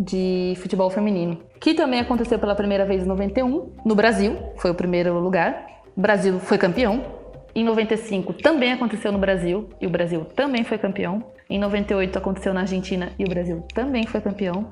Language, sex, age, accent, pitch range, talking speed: Portuguese, female, 20-39, Brazilian, 185-235 Hz, 180 wpm